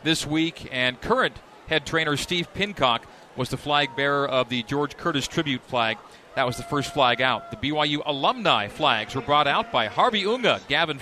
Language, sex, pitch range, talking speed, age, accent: English, male, 135-180 Hz, 190 wpm, 40-59, American